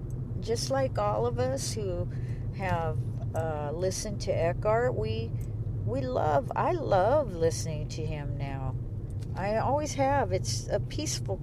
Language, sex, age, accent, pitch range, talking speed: English, female, 50-69, American, 115-125 Hz, 135 wpm